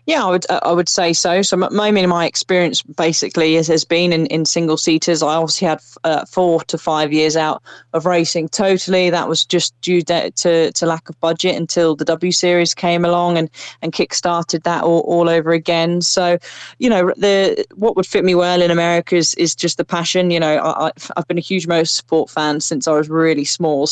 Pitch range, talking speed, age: 160-175 Hz, 220 wpm, 20-39